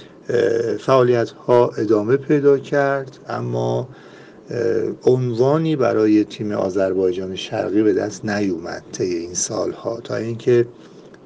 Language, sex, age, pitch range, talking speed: Persian, male, 50-69, 105-140 Hz, 105 wpm